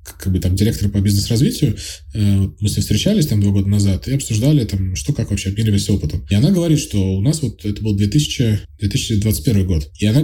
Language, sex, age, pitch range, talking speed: Russian, male, 20-39, 95-120 Hz, 210 wpm